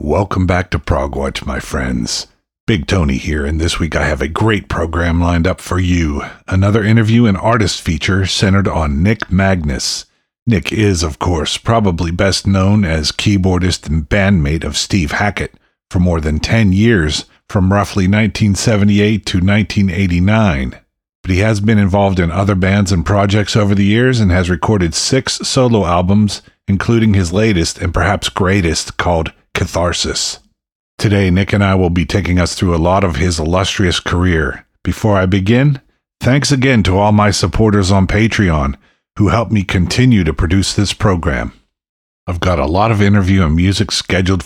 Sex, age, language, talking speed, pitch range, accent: male, 40-59, English, 170 wpm, 85-105 Hz, American